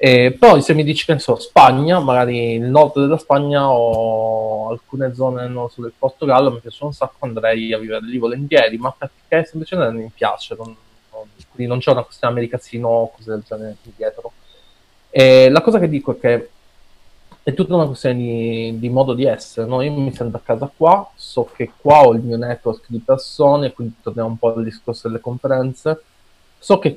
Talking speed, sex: 195 wpm, male